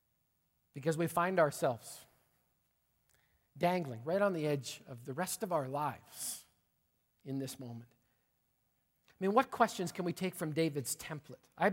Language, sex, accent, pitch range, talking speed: English, male, American, 150-200 Hz, 150 wpm